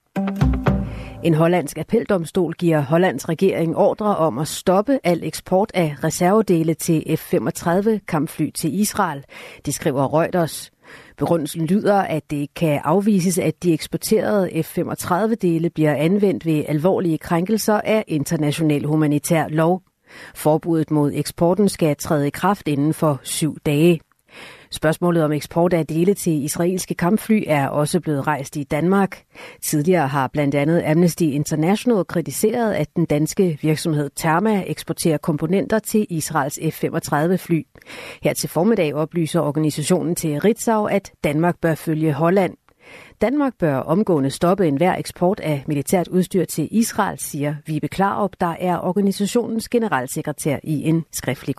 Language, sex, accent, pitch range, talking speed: Danish, female, native, 155-185 Hz, 135 wpm